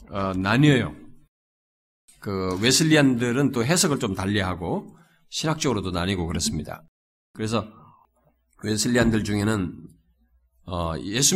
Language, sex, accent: Korean, male, native